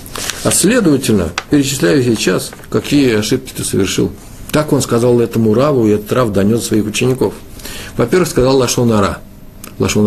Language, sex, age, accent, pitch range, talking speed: Russian, male, 50-69, native, 105-135 Hz, 145 wpm